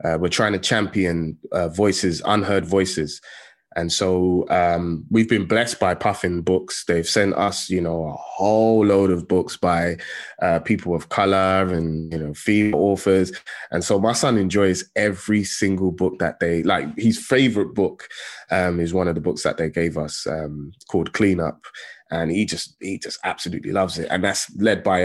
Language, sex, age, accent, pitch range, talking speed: English, male, 20-39, British, 85-105 Hz, 185 wpm